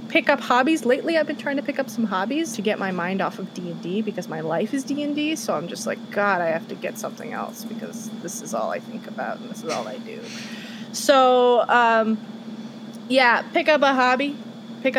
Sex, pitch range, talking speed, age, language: female, 215-255 Hz, 230 wpm, 20-39, English